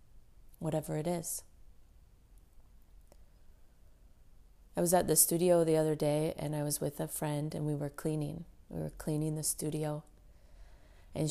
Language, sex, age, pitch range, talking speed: English, female, 30-49, 150-200 Hz, 145 wpm